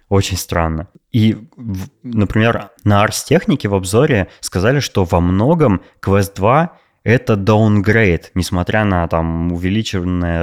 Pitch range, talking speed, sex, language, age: 85-105 Hz, 125 wpm, male, Russian, 20-39